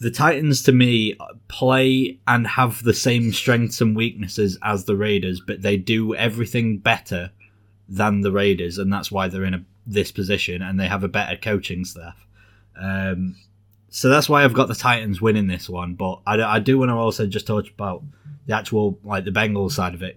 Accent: British